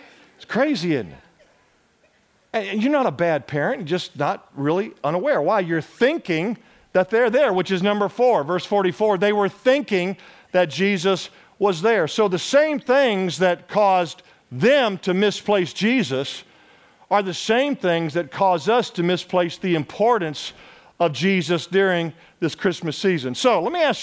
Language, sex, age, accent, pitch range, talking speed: English, male, 50-69, American, 175-230 Hz, 155 wpm